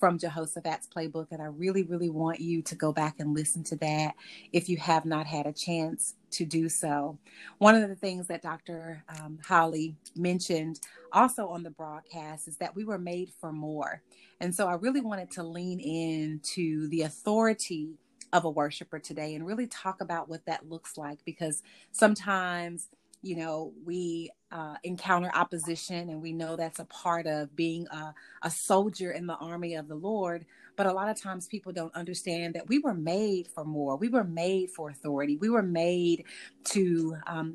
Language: English